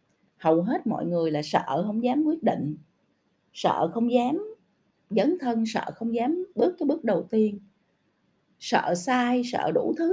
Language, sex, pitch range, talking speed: Vietnamese, female, 190-265 Hz, 165 wpm